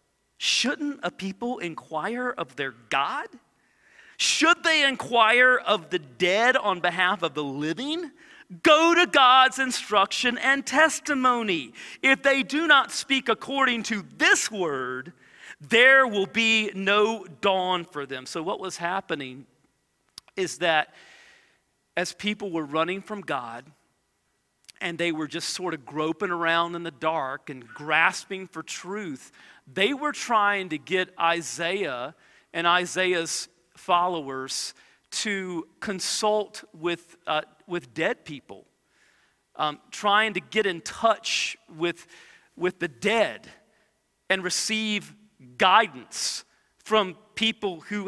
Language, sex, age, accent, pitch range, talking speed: English, male, 40-59, American, 165-225 Hz, 125 wpm